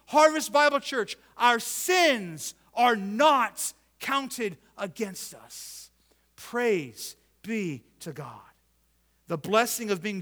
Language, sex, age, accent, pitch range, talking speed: English, male, 50-69, American, 145-215 Hz, 105 wpm